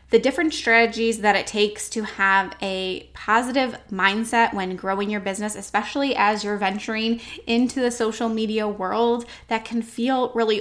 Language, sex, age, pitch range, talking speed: English, female, 10-29, 200-230 Hz, 160 wpm